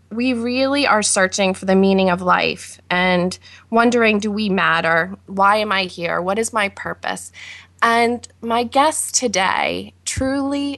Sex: female